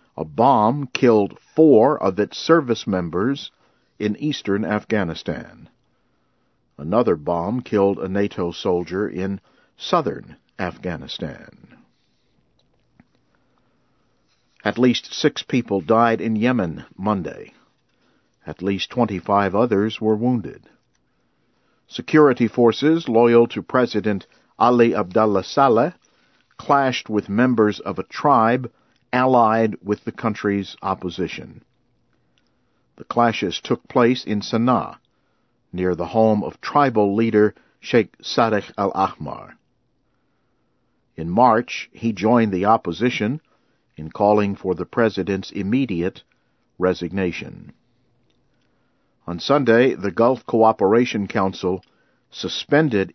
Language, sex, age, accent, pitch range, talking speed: English, male, 50-69, American, 95-120 Hz, 100 wpm